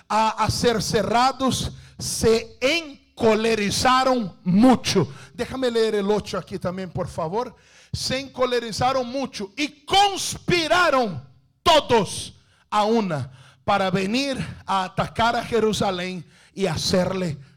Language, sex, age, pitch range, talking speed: English, male, 50-69, 210-330 Hz, 100 wpm